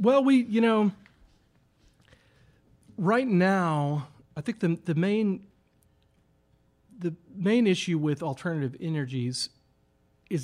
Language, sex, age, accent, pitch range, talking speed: English, male, 40-59, American, 125-165 Hz, 105 wpm